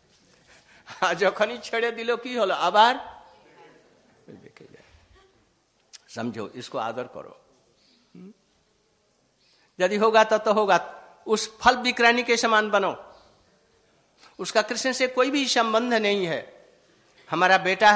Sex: male